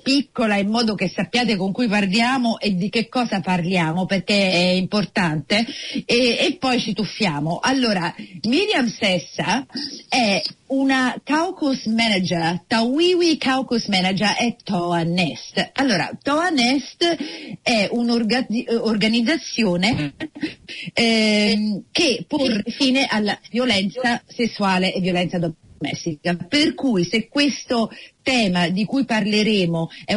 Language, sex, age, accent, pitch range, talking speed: Italian, female, 40-59, native, 190-250 Hz, 115 wpm